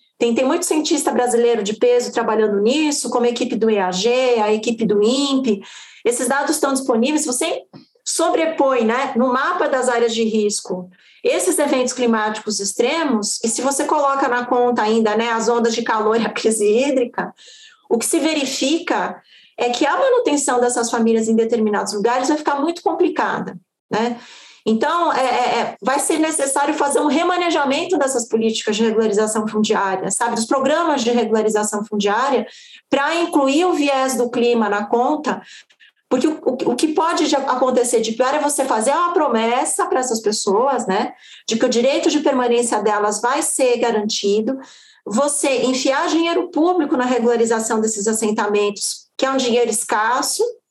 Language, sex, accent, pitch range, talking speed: Portuguese, female, Brazilian, 225-290 Hz, 160 wpm